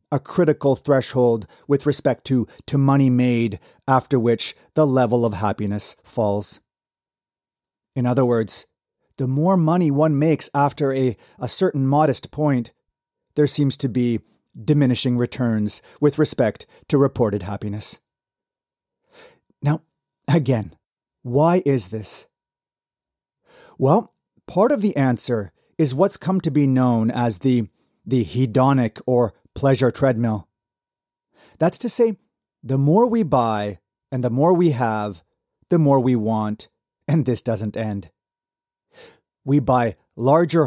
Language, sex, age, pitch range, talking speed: English, male, 30-49, 115-150 Hz, 130 wpm